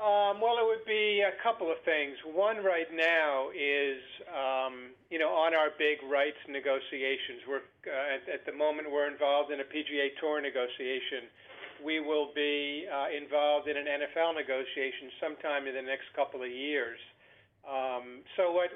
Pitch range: 140-175 Hz